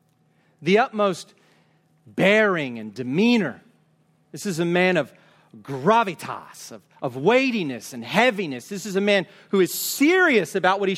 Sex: male